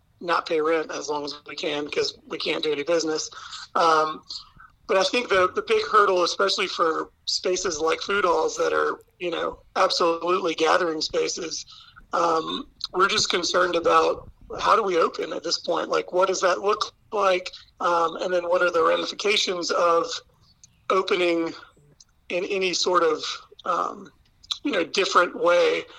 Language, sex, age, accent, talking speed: English, male, 40-59, American, 165 wpm